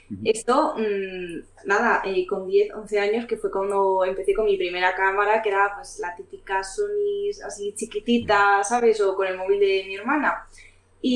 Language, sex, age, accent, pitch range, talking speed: Spanish, female, 20-39, Spanish, 195-280 Hz, 175 wpm